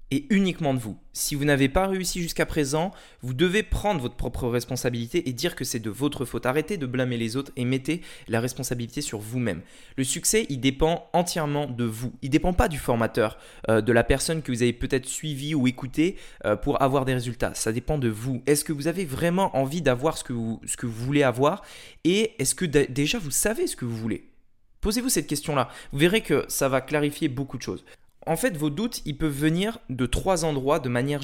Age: 20-39